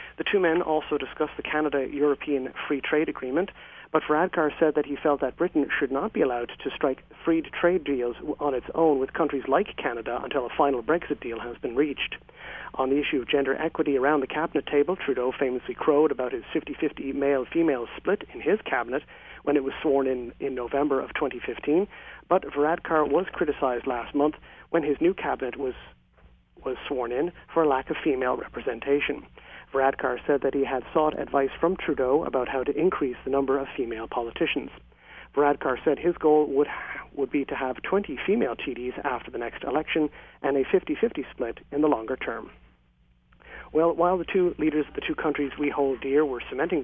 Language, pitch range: English, 130-155 Hz